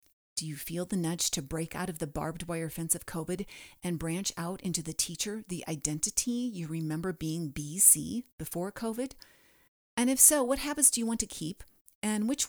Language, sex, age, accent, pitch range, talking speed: English, female, 40-59, American, 165-225 Hz, 195 wpm